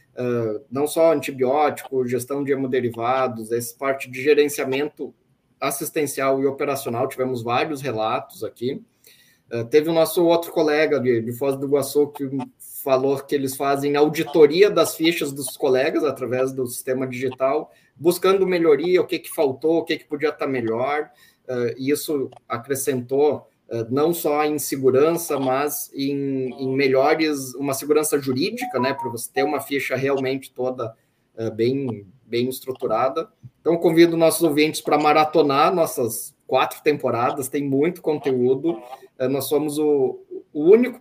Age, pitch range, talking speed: 20-39, 130-165 Hz, 140 wpm